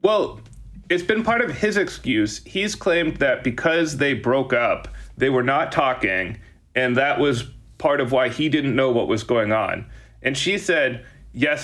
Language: English